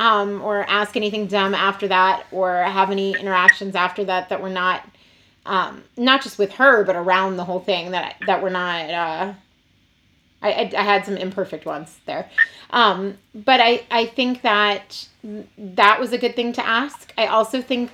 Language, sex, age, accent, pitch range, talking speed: English, female, 30-49, American, 190-240 Hz, 185 wpm